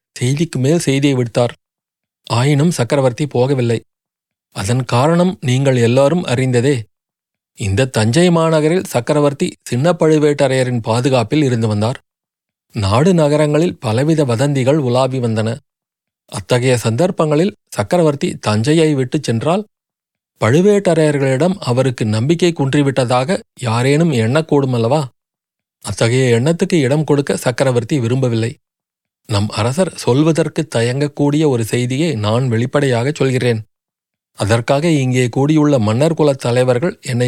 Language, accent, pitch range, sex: Tamil, native, 120-155 Hz, male